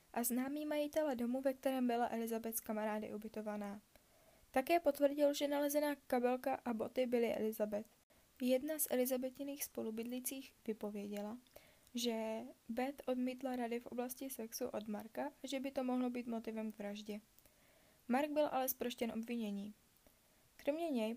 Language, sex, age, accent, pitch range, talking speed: Czech, female, 10-29, native, 230-275 Hz, 135 wpm